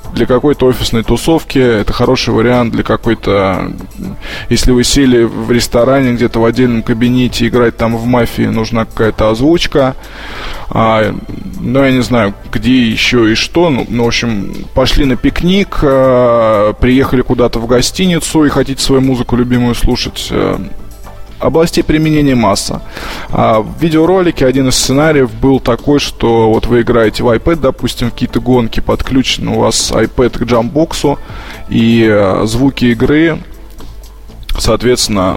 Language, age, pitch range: Russian, 20-39, 110-130 Hz